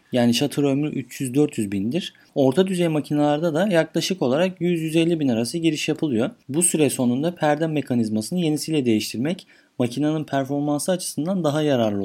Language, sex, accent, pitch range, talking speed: Turkish, male, native, 135-165 Hz, 140 wpm